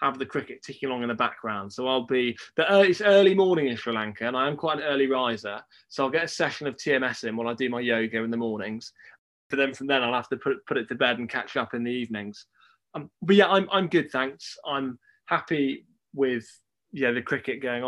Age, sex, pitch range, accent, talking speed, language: 20-39, male, 120-190 Hz, British, 250 wpm, English